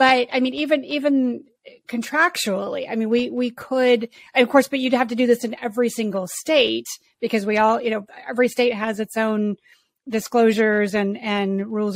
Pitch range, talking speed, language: 195-230 Hz, 190 wpm, English